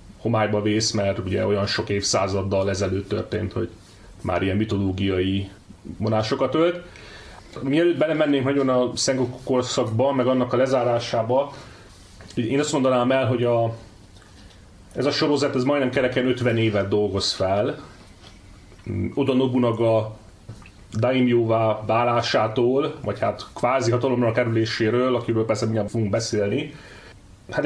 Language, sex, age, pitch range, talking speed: Hungarian, male, 30-49, 100-130 Hz, 120 wpm